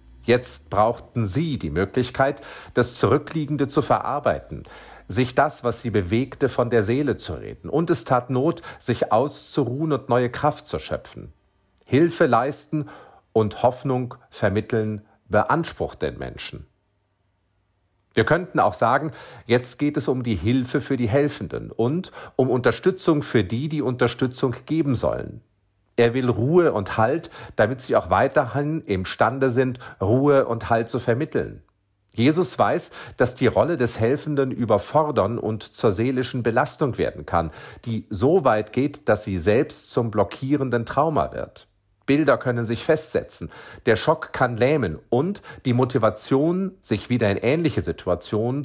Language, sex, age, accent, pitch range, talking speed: German, male, 40-59, German, 110-140 Hz, 145 wpm